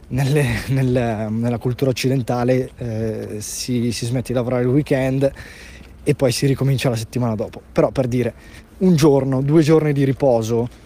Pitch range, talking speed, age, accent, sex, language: 120-155 Hz, 150 wpm, 20-39, native, male, Italian